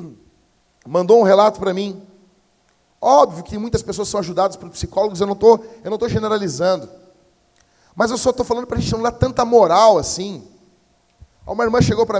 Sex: male